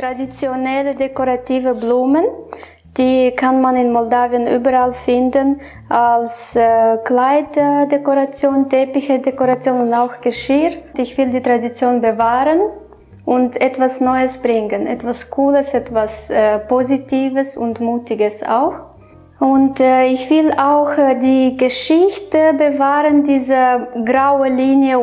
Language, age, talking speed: German, 20-39, 100 wpm